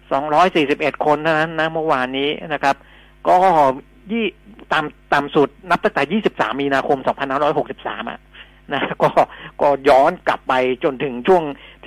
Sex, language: male, Thai